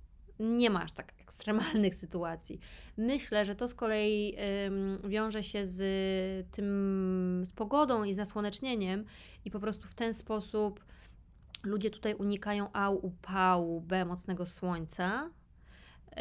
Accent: native